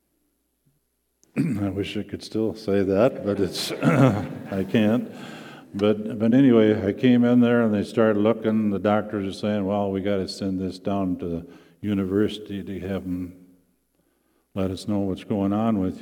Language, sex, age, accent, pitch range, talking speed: English, male, 50-69, American, 95-105 Hz, 170 wpm